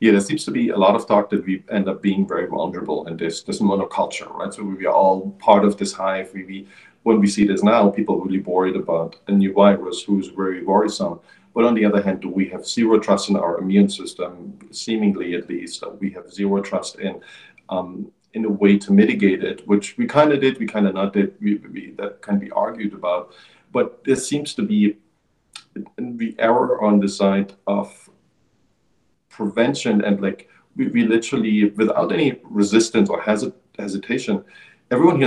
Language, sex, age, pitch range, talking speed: English, male, 40-59, 95-110 Hz, 200 wpm